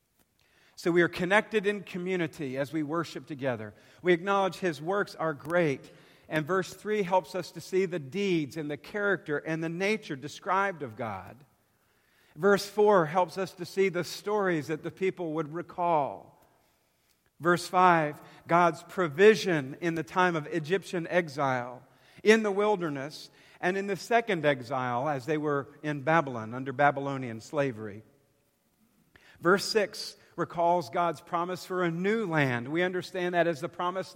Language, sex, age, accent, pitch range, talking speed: English, male, 50-69, American, 145-180 Hz, 155 wpm